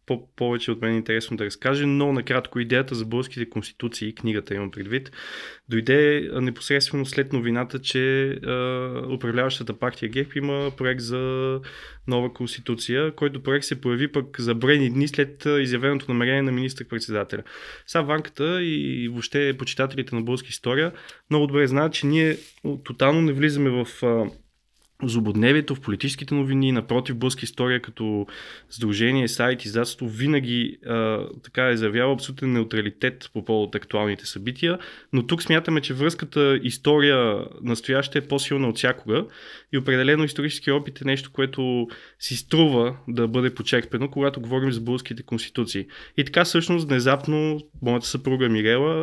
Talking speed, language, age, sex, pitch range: 145 wpm, Bulgarian, 20-39, male, 120-140 Hz